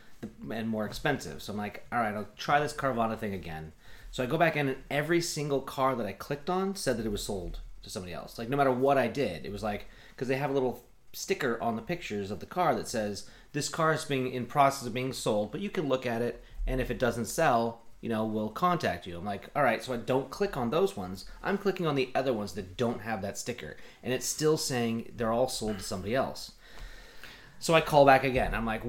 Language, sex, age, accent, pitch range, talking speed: English, male, 30-49, American, 115-145 Hz, 255 wpm